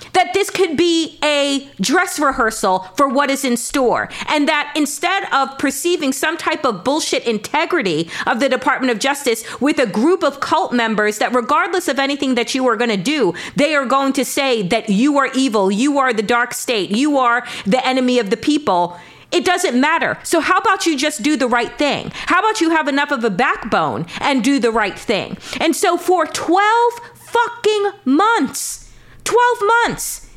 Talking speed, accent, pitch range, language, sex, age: 190 wpm, American, 255-350 Hz, English, female, 40-59